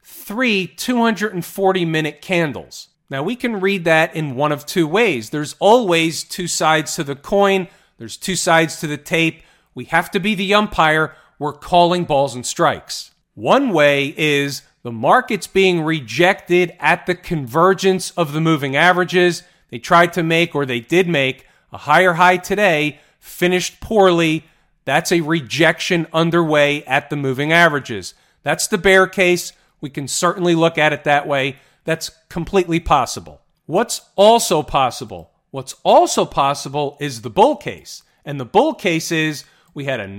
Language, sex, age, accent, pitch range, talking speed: English, male, 40-59, American, 155-190 Hz, 160 wpm